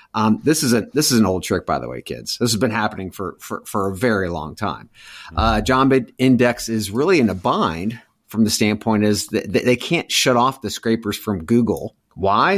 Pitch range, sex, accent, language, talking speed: 105-130 Hz, male, American, English, 220 wpm